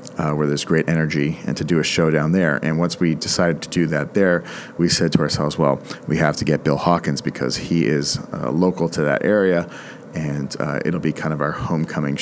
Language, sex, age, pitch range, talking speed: English, male, 40-59, 75-90 Hz, 230 wpm